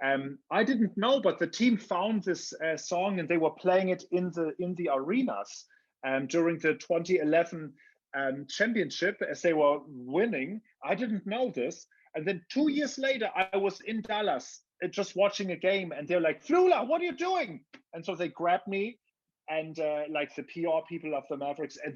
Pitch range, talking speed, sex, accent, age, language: 145-195 Hz, 195 wpm, male, German, 30-49, English